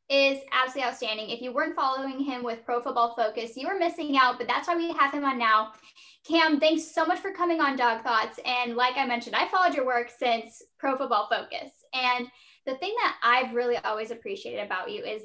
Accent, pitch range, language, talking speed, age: American, 235-295 Hz, English, 220 wpm, 10-29